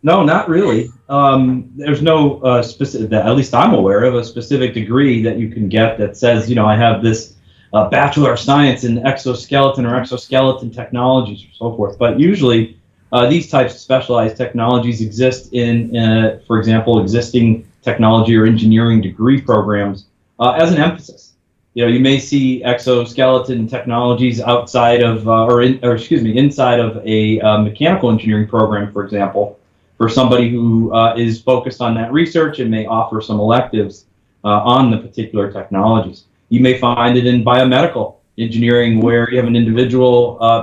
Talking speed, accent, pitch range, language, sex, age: 175 wpm, American, 110-130 Hz, English, male, 30-49